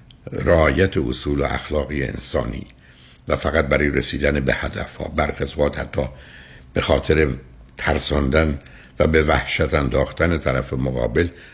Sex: male